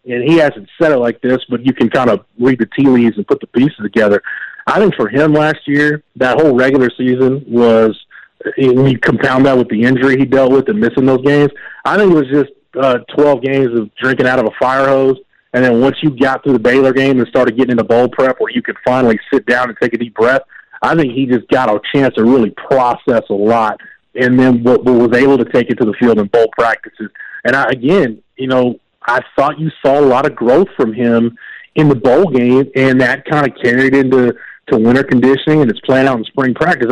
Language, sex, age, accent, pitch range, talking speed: English, male, 30-49, American, 125-150 Hz, 235 wpm